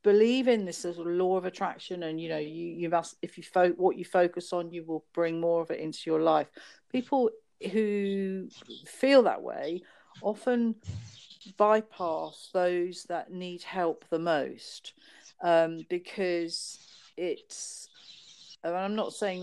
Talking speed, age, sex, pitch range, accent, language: 165 wpm, 50-69, female, 160-200 Hz, British, English